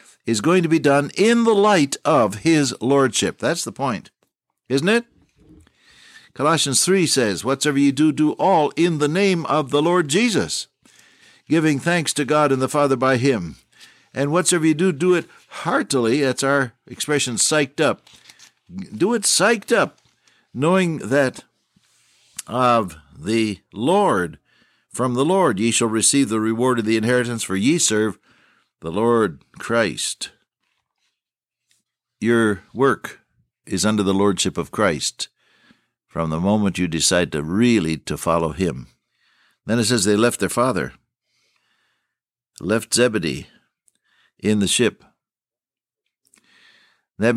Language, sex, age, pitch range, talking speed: English, male, 60-79, 105-155 Hz, 140 wpm